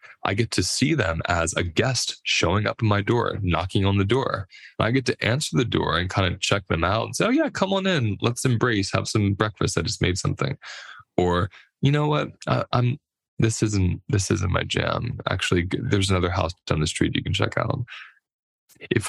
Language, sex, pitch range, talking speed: English, male, 90-120 Hz, 215 wpm